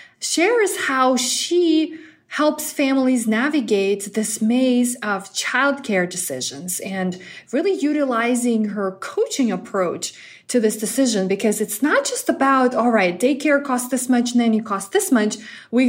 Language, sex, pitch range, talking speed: English, female, 215-265 Hz, 145 wpm